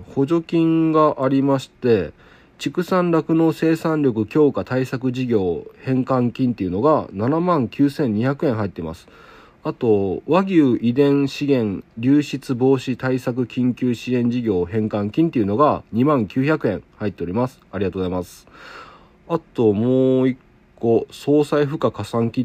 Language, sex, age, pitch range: Japanese, male, 40-59, 105-150 Hz